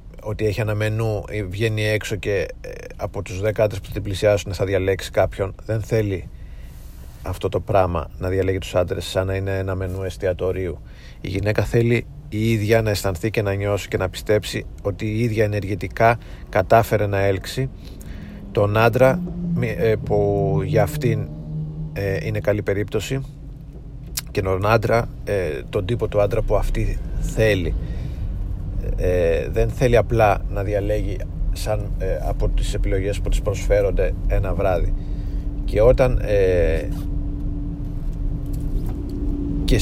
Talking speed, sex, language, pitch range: 135 wpm, male, Greek, 95-110 Hz